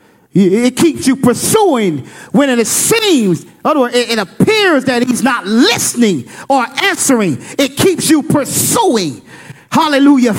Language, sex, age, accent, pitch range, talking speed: English, male, 40-59, American, 220-335 Hz, 115 wpm